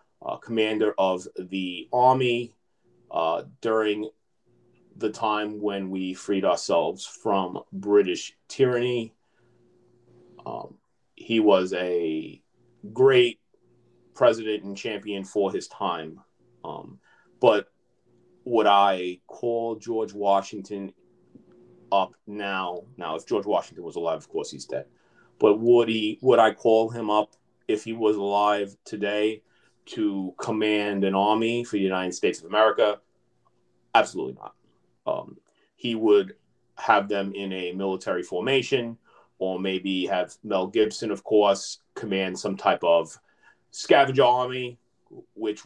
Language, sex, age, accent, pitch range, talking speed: English, male, 30-49, American, 95-120 Hz, 120 wpm